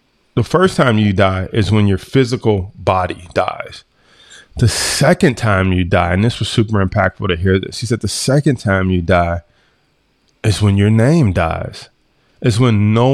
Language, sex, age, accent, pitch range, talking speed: English, male, 20-39, American, 100-125 Hz, 180 wpm